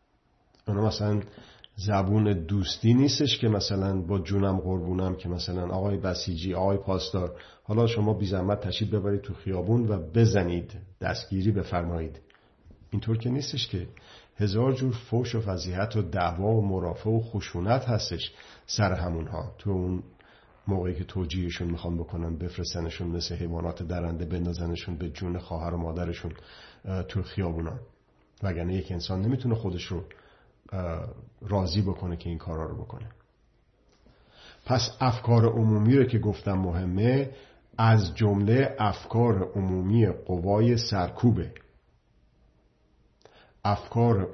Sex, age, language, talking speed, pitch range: male, 50-69, Persian, 125 wpm, 90-110 Hz